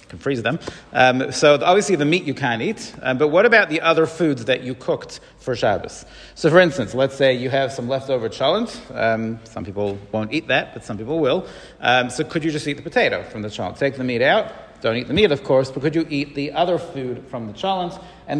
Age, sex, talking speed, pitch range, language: 40-59, male, 245 wpm, 125-160 Hz, English